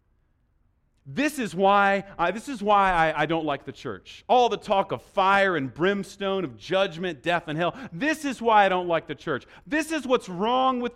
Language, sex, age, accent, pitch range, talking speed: English, male, 40-59, American, 145-220 Hz, 190 wpm